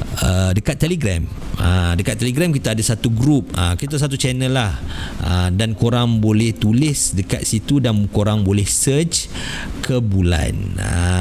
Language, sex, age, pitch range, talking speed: Malay, male, 50-69, 95-135 Hz, 130 wpm